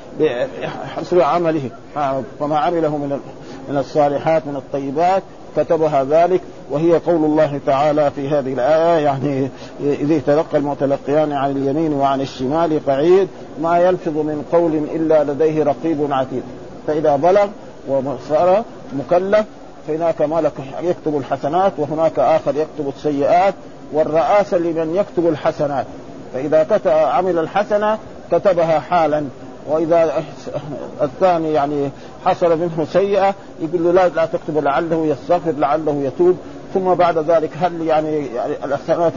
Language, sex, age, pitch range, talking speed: Arabic, male, 40-59, 145-180 Hz, 120 wpm